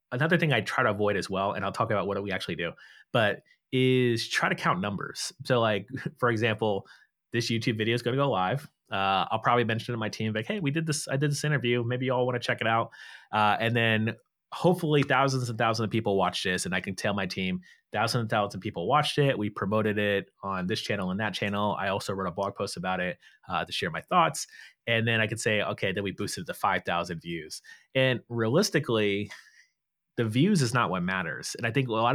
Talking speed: 245 wpm